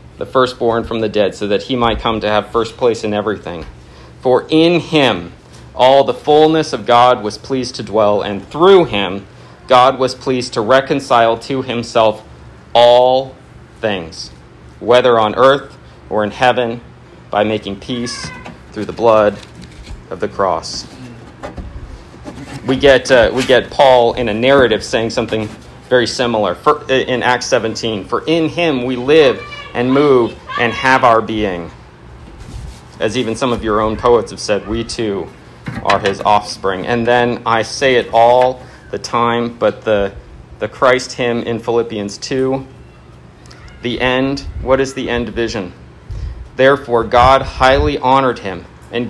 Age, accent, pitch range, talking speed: 40-59, American, 105-130 Hz, 155 wpm